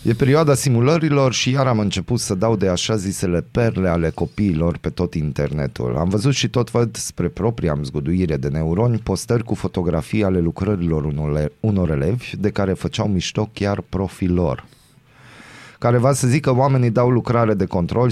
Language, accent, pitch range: Romanian, native, 85-115 Hz